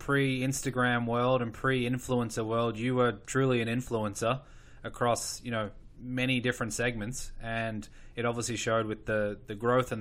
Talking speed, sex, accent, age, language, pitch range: 150 wpm, male, Australian, 20-39, English, 115-130 Hz